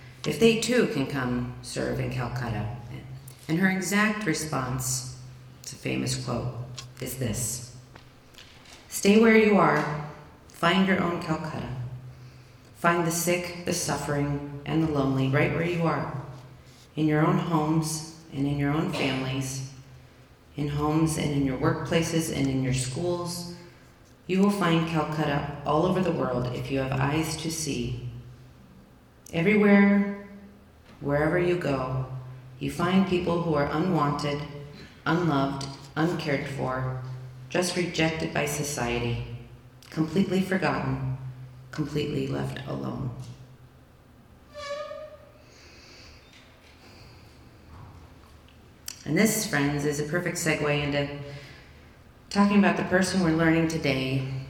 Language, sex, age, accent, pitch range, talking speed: English, female, 40-59, American, 130-165 Hz, 120 wpm